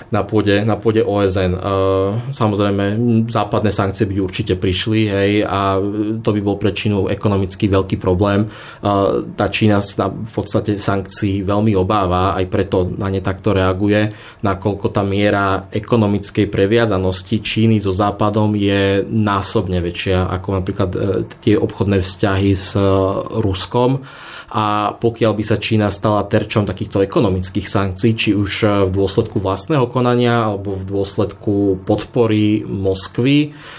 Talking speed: 135 wpm